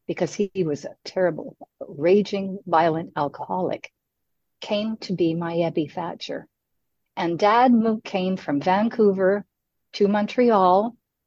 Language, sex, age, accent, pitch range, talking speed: English, female, 50-69, American, 165-225 Hz, 110 wpm